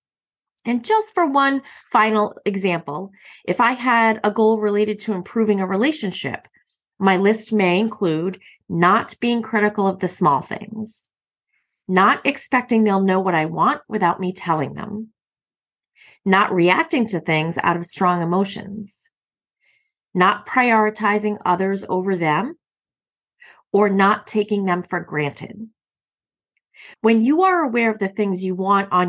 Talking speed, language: 140 wpm, English